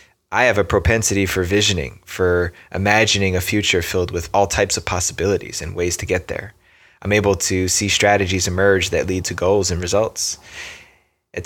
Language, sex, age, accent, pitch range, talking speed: English, male, 20-39, American, 90-100 Hz, 180 wpm